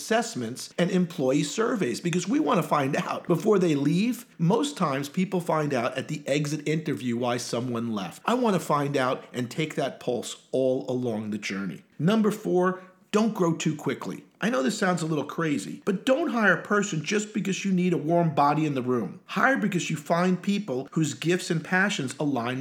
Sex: male